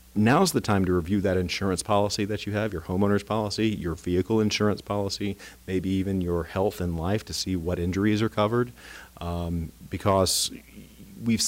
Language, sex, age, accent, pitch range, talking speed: English, male, 40-59, American, 85-100 Hz, 175 wpm